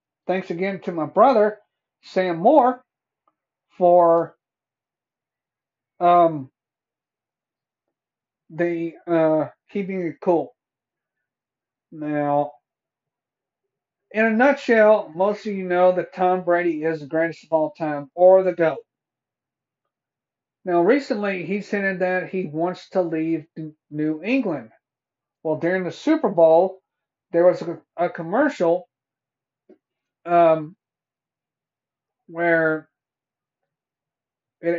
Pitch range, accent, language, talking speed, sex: 155-190 Hz, American, English, 100 wpm, male